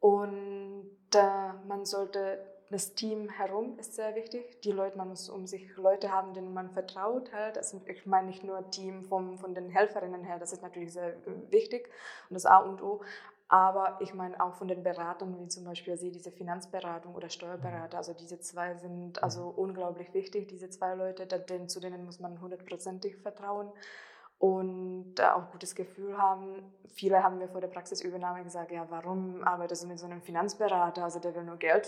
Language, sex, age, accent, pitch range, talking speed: German, female, 20-39, German, 180-200 Hz, 185 wpm